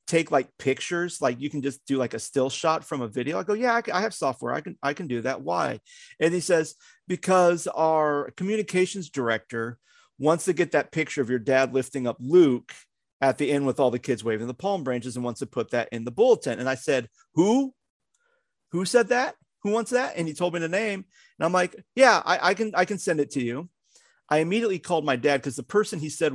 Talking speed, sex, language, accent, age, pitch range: 235 wpm, male, English, American, 40-59, 130-200 Hz